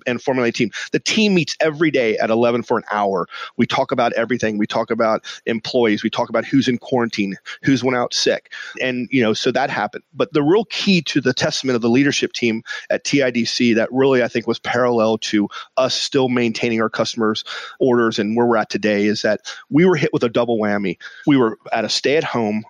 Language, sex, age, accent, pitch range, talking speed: English, male, 30-49, American, 110-130 Hz, 220 wpm